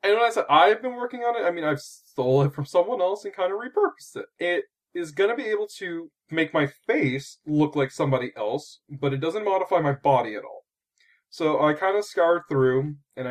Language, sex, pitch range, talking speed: English, male, 135-195 Hz, 230 wpm